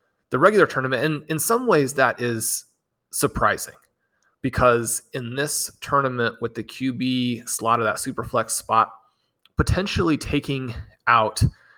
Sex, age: male, 30-49